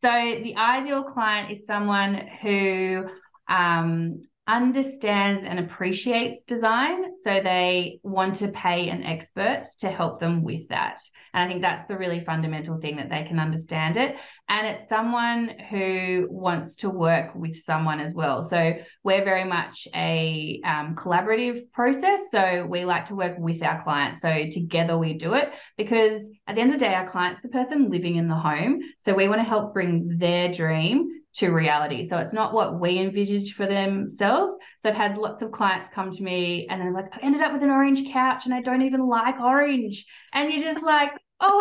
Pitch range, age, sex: 175-255 Hz, 20-39, female